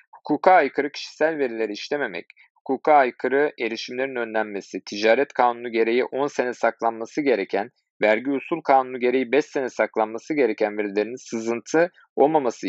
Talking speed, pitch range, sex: 130 wpm, 110-135 Hz, male